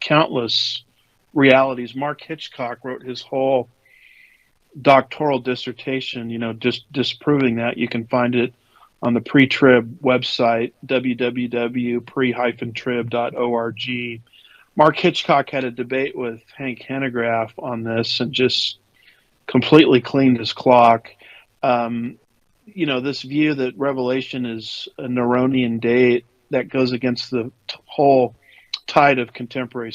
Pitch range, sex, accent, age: 120-140 Hz, male, American, 40-59